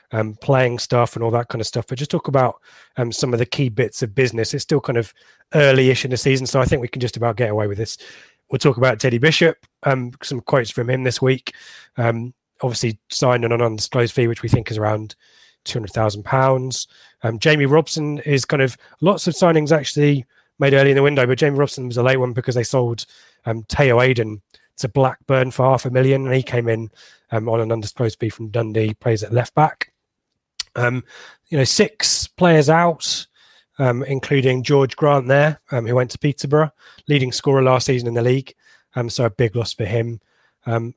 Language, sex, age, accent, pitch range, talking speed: English, male, 20-39, British, 115-135 Hz, 210 wpm